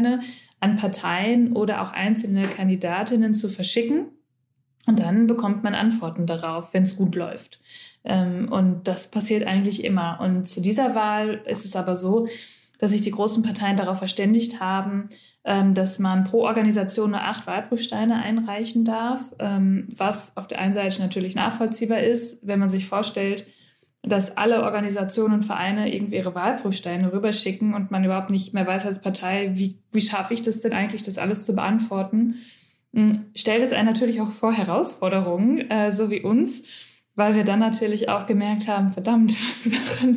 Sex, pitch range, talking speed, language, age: female, 190-225 Hz, 165 wpm, German, 20-39